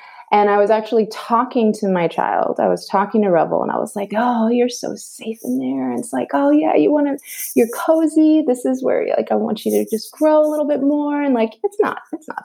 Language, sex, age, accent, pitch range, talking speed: English, female, 20-39, American, 180-255 Hz, 255 wpm